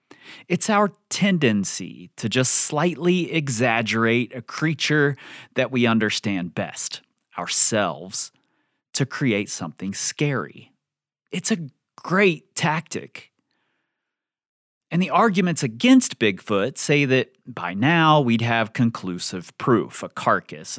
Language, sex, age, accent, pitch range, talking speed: English, male, 30-49, American, 115-170 Hz, 105 wpm